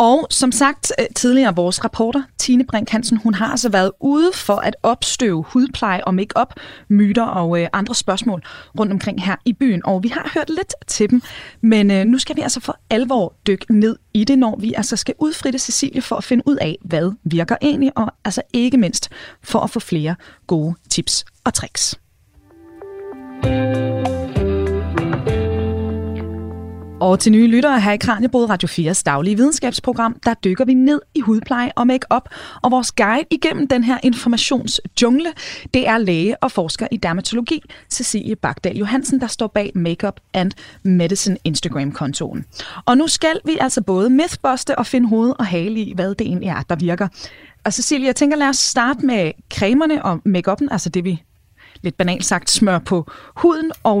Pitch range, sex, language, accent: 185-255 Hz, female, Danish, native